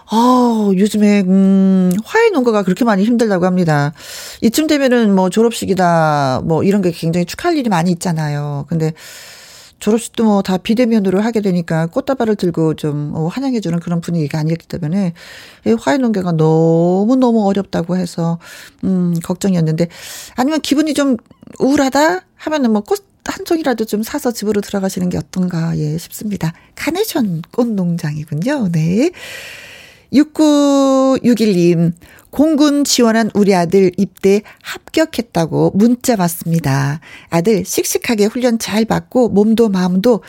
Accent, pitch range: native, 175-245 Hz